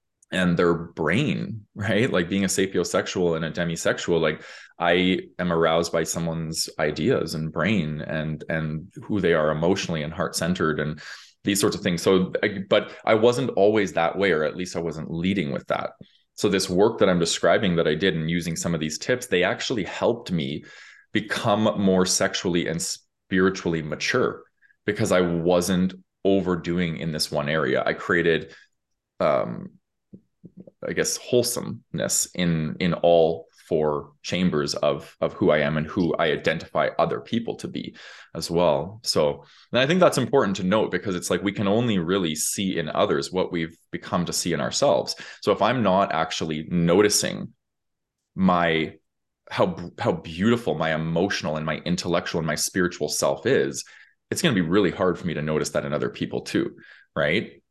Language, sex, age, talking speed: English, male, 20-39, 175 wpm